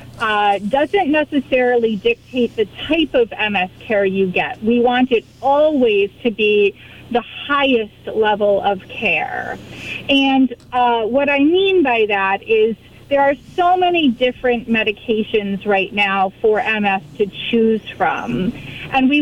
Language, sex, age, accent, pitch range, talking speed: English, female, 30-49, American, 210-255 Hz, 140 wpm